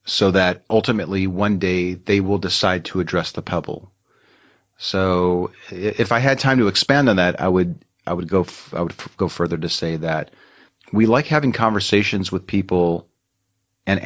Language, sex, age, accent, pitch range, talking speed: English, male, 40-59, American, 90-105 Hz, 180 wpm